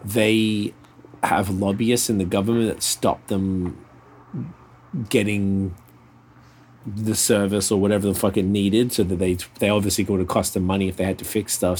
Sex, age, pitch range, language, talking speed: male, 20-39, 95-110 Hz, English, 175 wpm